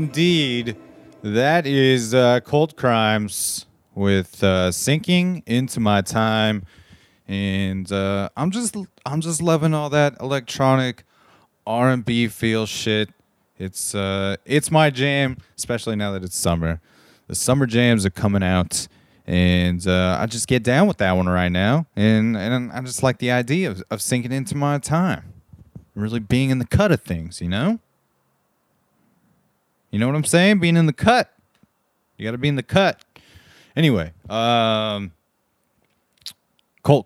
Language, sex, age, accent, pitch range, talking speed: English, male, 30-49, American, 95-130 Hz, 150 wpm